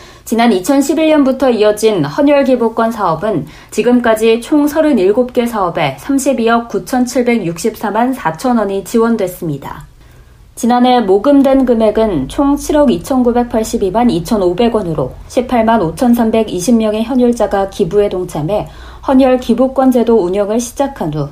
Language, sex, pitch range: Korean, female, 205-255 Hz